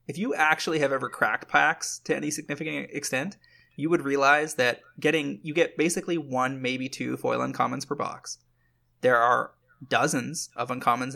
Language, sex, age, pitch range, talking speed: English, male, 20-39, 120-145 Hz, 165 wpm